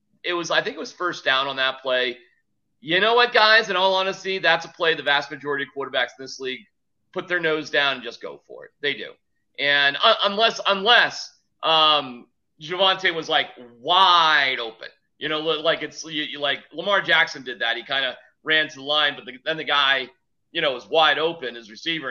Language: English